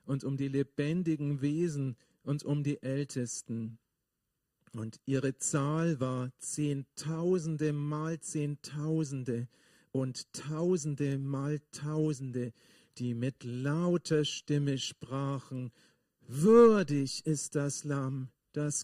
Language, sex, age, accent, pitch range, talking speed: German, male, 50-69, German, 125-160 Hz, 95 wpm